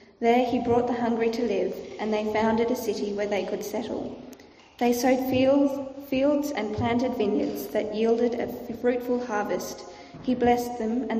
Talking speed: 165 wpm